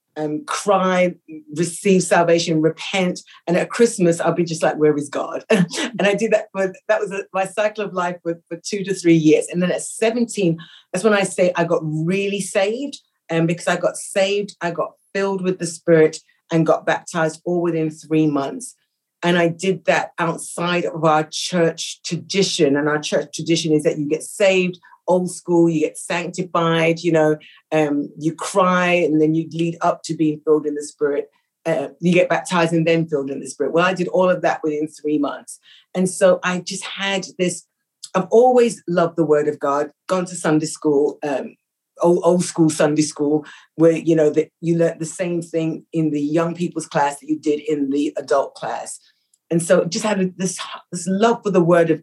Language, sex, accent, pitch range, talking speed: English, female, British, 155-185 Hz, 200 wpm